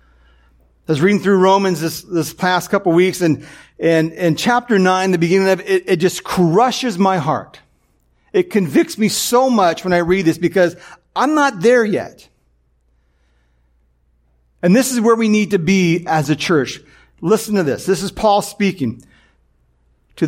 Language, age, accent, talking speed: English, 40-59, American, 175 wpm